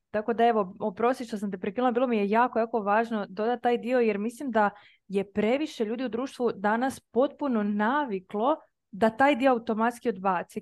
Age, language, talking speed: 20-39, Croatian, 185 wpm